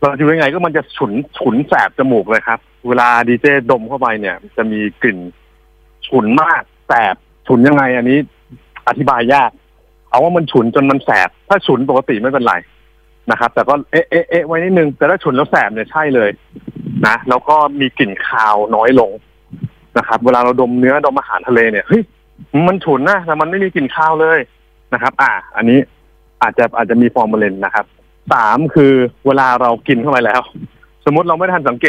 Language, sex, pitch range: Thai, male, 115-155 Hz